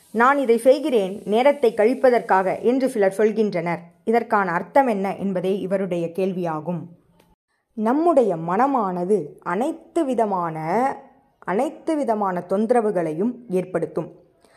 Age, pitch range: 20-39, 185-240 Hz